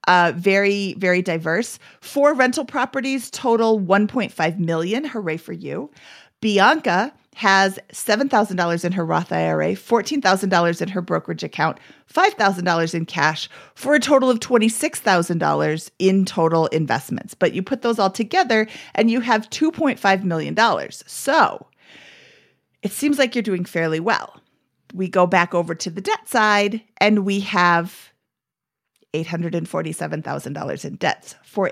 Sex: female